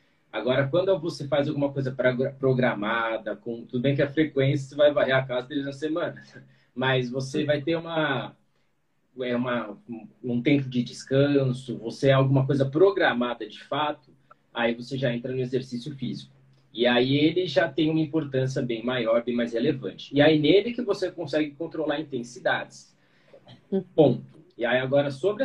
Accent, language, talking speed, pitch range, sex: Brazilian, Portuguese, 165 wpm, 125-155 Hz, male